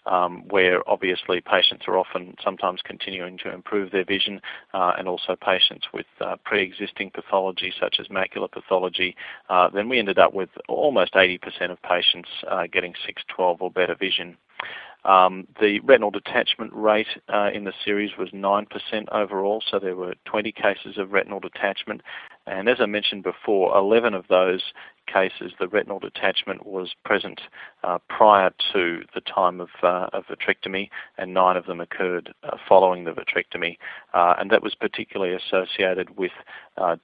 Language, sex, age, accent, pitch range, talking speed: English, male, 40-59, Australian, 90-100 Hz, 165 wpm